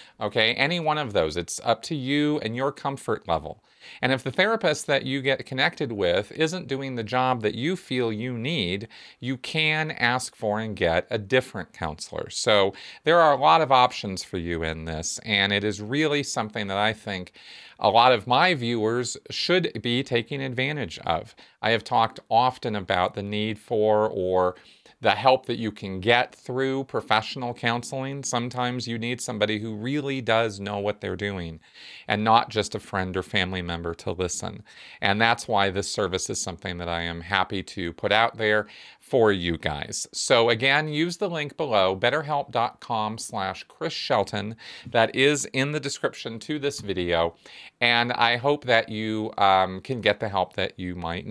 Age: 40-59